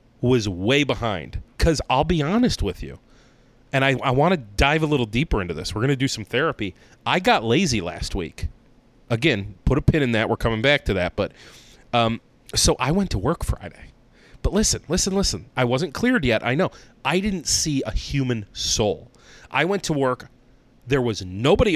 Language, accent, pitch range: English, American, 115-135 Hz